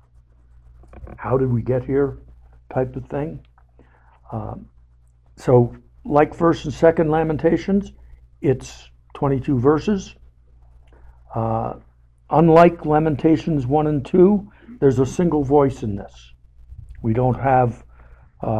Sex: male